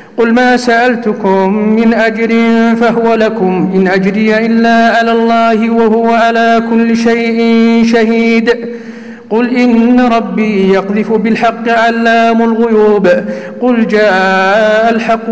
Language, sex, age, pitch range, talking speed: Arabic, male, 50-69, 215-230 Hz, 105 wpm